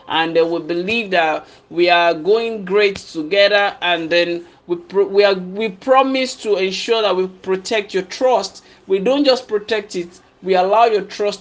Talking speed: 180 wpm